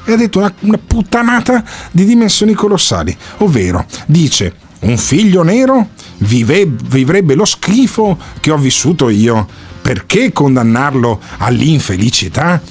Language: Italian